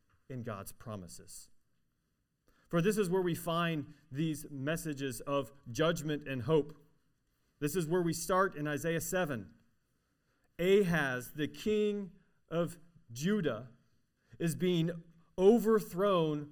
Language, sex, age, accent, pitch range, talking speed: English, male, 40-59, American, 145-180 Hz, 115 wpm